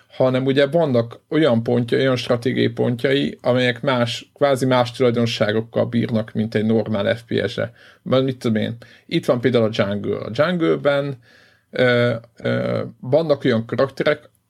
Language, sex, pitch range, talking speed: Hungarian, male, 115-135 Hz, 140 wpm